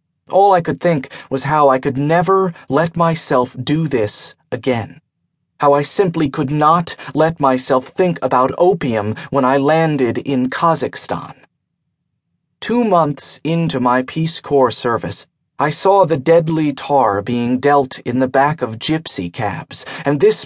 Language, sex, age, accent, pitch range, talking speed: English, male, 30-49, American, 135-170 Hz, 150 wpm